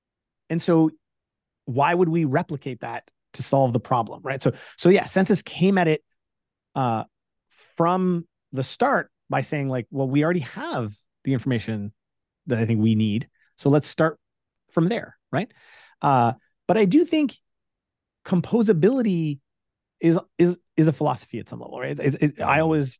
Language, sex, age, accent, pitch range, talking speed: English, male, 30-49, American, 125-170 Hz, 165 wpm